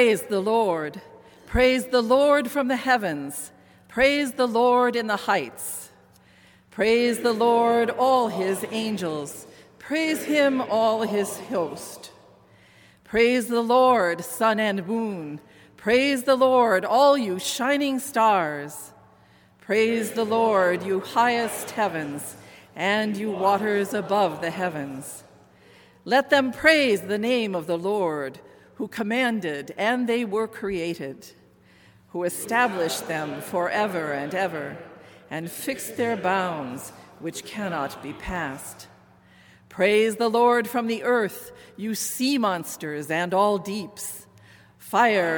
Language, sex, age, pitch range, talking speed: English, female, 50-69, 170-240 Hz, 120 wpm